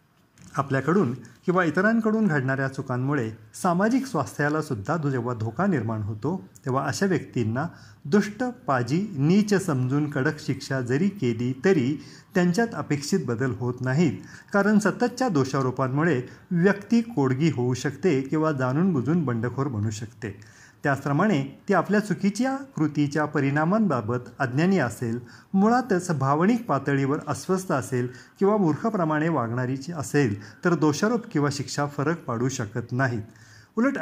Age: 40-59